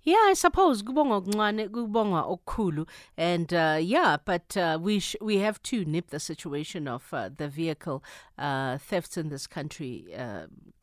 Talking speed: 145 wpm